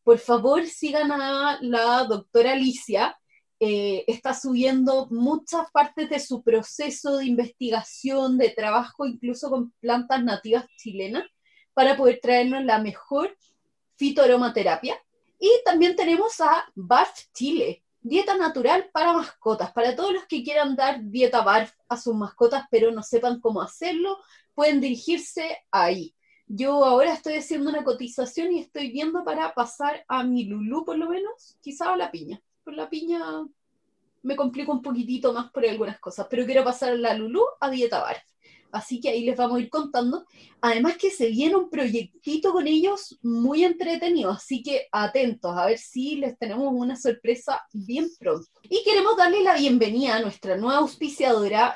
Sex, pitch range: female, 235-320 Hz